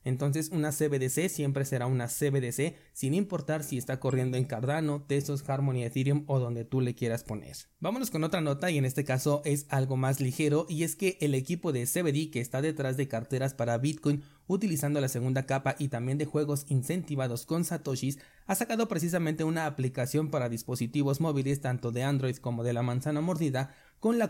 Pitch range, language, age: 125-155 Hz, Spanish, 30-49